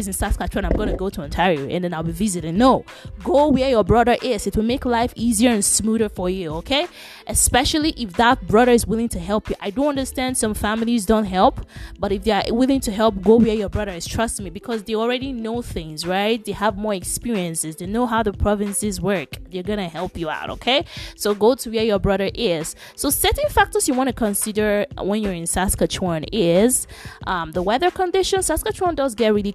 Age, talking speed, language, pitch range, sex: 20-39, 220 wpm, English, 185-230 Hz, female